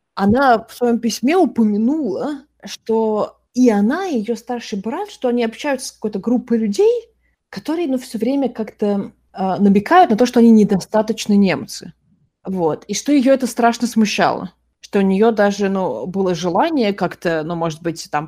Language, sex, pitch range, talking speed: Russian, female, 165-225 Hz, 165 wpm